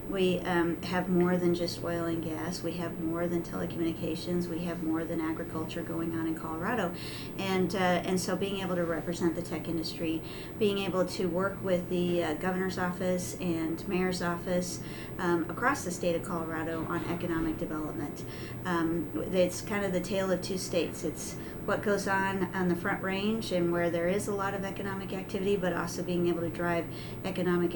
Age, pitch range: 40-59, 170-190 Hz